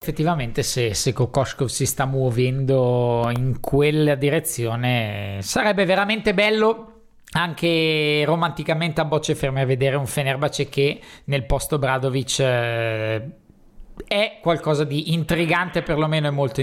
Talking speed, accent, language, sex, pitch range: 120 wpm, native, Italian, male, 130-180 Hz